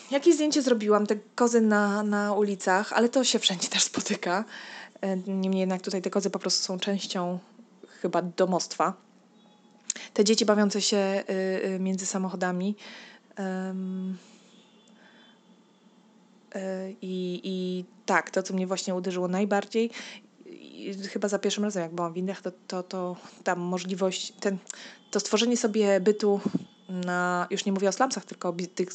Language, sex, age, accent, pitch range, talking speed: Polish, female, 20-39, native, 185-215 Hz, 145 wpm